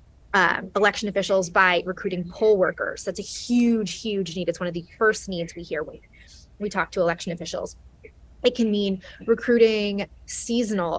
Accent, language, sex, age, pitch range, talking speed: American, English, female, 20-39, 180-225 Hz, 170 wpm